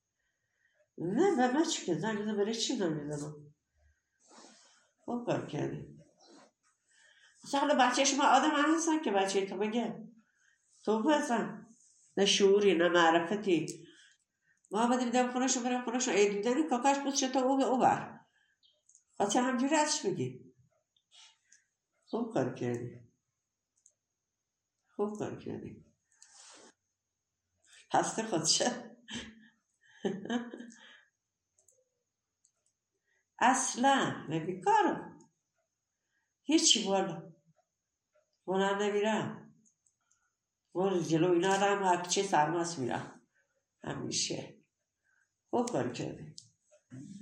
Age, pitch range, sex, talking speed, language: 60-79, 170-250 Hz, female, 80 wpm, Persian